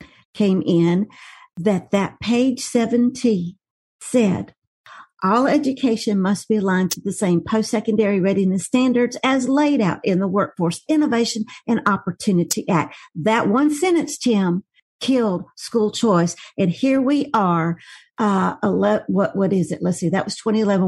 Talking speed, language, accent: 145 wpm, English, American